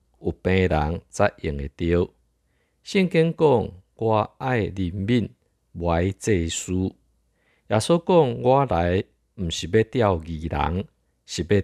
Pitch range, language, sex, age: 80-110 Hz, Chinese, male, 50-69